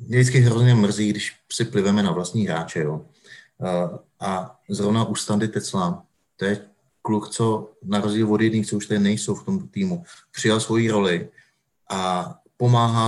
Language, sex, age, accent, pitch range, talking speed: Czech, male, 30-49, native, 105-115 Hz, 155 wpm